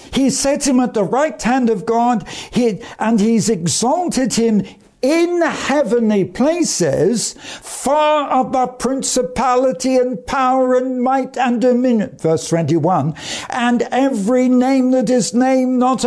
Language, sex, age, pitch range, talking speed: English, male, 60-79, 210-265 Hz, 125 wpm